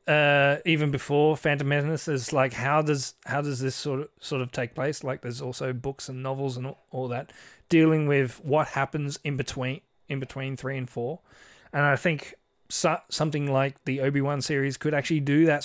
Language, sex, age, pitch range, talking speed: English, male, 30-49, 130-150 Hz, 200 wpm